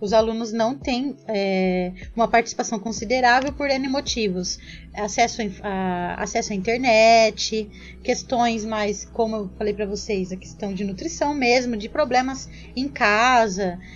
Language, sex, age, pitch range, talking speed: Portuguese, female, 20-39, 210-255 Hz, 140 wpm